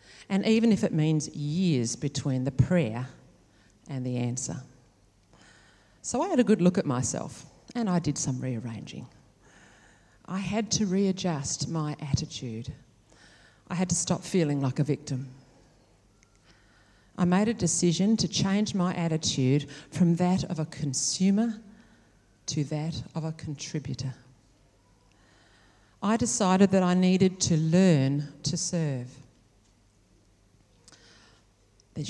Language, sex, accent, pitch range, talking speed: English, female, Australian, 120-180 Hz, 125 wpm